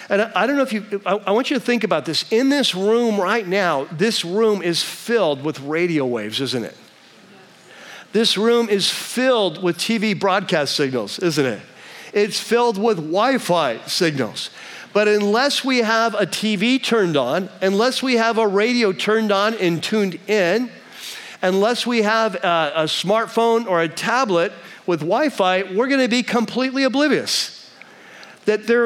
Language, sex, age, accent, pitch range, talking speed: English, male, 50-69, American, 160-225 Hz, 160 wpm